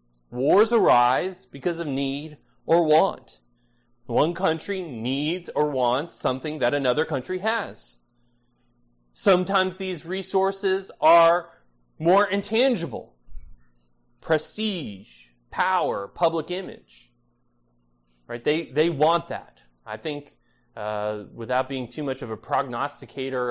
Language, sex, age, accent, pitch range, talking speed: English, male, 30-49, American, 105-165 Hz, 105 wpm